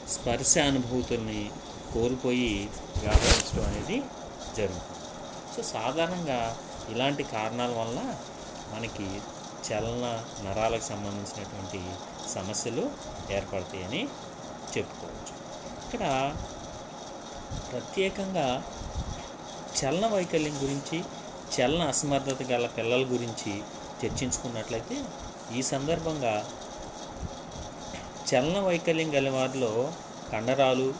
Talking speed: 70 wpm